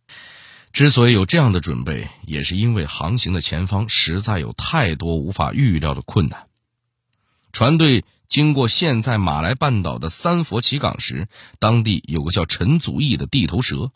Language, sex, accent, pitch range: Chinese, male, native, 85-125 Hz